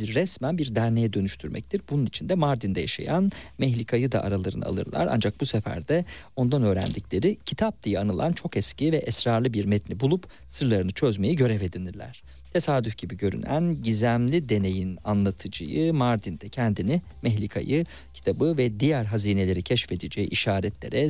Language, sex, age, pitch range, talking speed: Turkish, male, 40-59, 100-135 Hz, 135 wpm